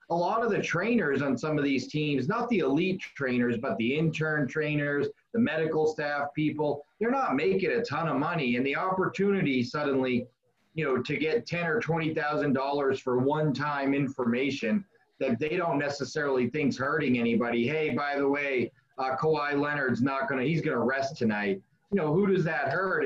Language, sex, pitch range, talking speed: English, male, 130-170 Hz, 185 wpm